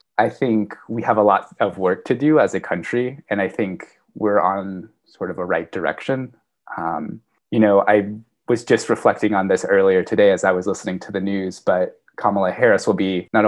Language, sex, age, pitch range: English, male, 20-39, 100-120 Hz